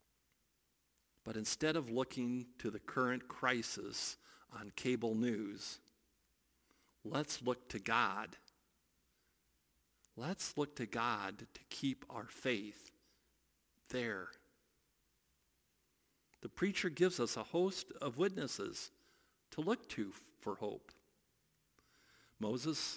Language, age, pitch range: English, 50-69, 100-160 Hz